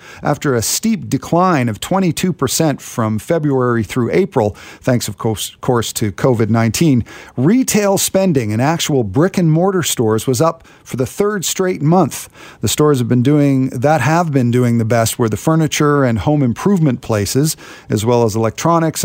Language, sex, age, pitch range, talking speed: English, male, 50-69, 120-165 Hz, 165 wpm